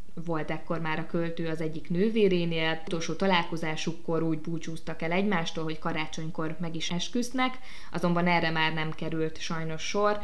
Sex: female